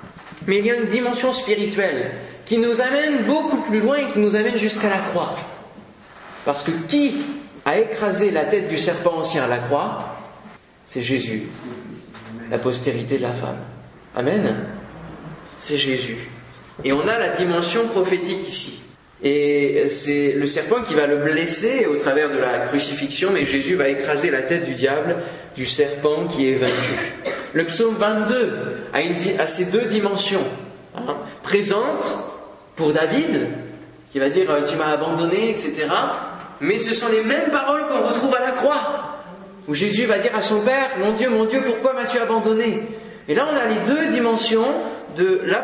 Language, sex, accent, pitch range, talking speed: French, male, French, 150-230 Hz, 175 wpm